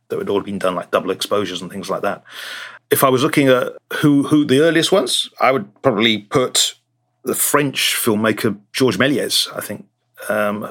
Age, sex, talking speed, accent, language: 40-59, male, 195 wpm, British, English